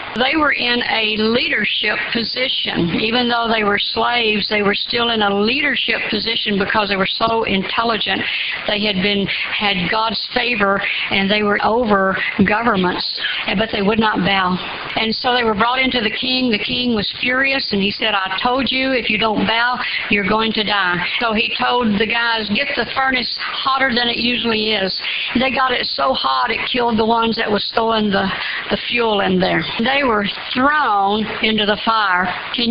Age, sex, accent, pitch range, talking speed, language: 60-79, female, American, 210-255 Hz, 185 wpm, English